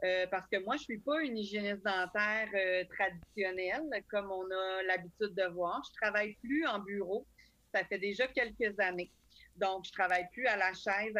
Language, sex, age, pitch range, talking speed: French, female, 30-49, 190-230 Hz, 205 wpm